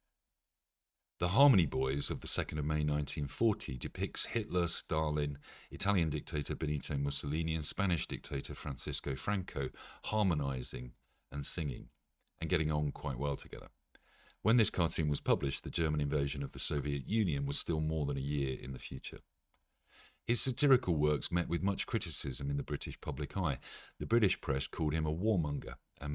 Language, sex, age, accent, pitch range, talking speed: English, male, 40-59, British, 70-85 Hz, 165 wpm